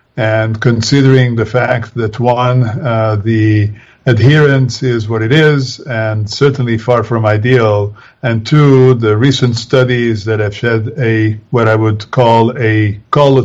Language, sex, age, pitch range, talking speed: English, male, 50-69, 110-130 Hz, 145 wpm